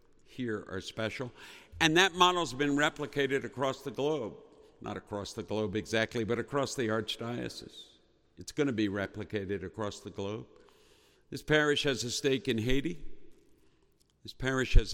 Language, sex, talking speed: English, male, 155 wpm